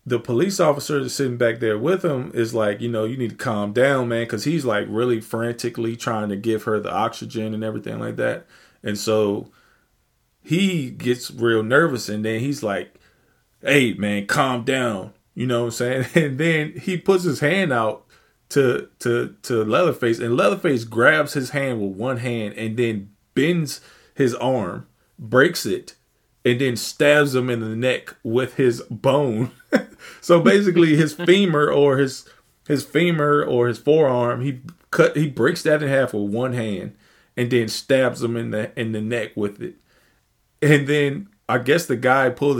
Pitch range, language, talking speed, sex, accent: 110-140 Hz, English, 180 wpm, male, American